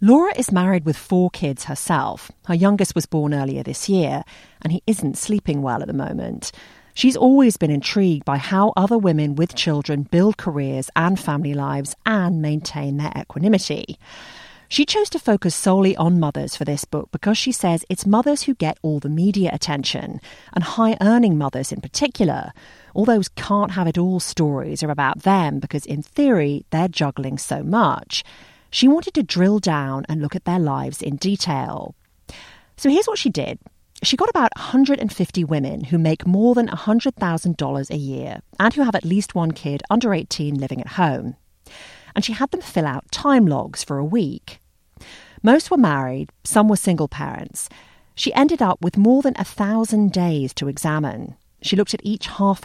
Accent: British